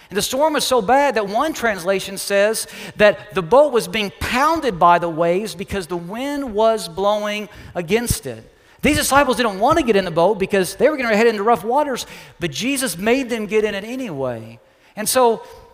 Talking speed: 205 wpm